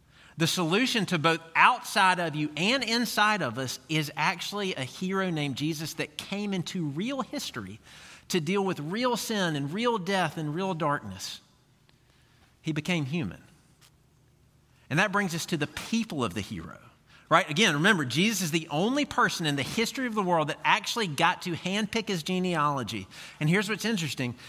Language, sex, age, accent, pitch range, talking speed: English, male, 40-59, American, 145-195 Hz, 175 wpm